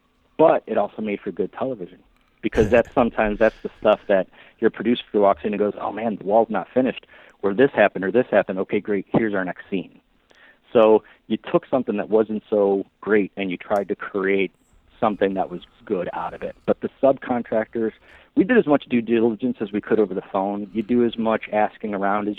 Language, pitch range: English, 100-115 Hz